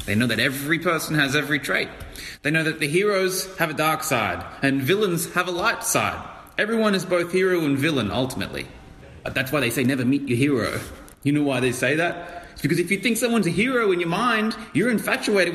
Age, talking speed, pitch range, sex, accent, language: 20-39, 225 wpm, 110-165 Hz, male, Australian, English